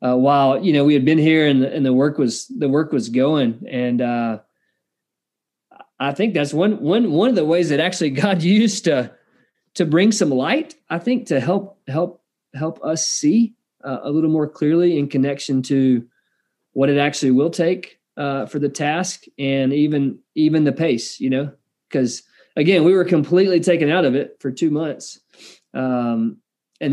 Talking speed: 185 wpm